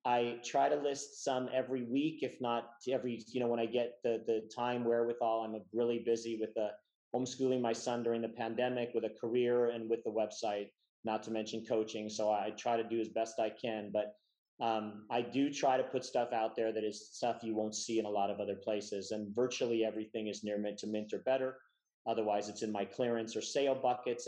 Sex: male